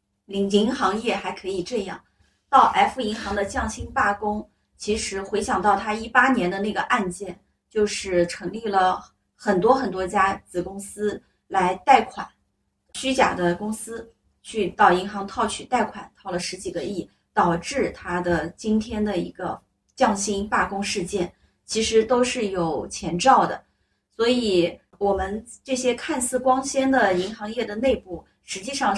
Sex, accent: female, native